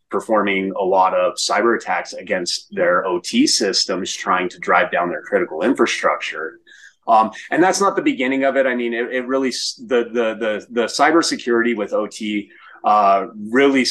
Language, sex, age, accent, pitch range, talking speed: English, male, 30-49, American, 95-135 Hz, 170 wpm